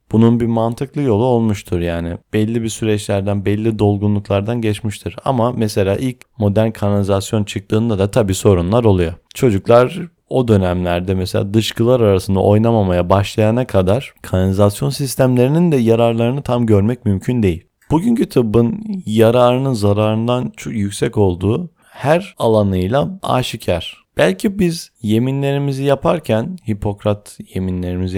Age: 30-49